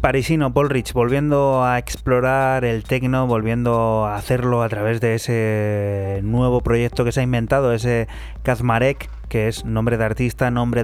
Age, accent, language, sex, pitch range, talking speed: 20-39, Spanish, Spanish, male, 115-130 Hz, 160 wpm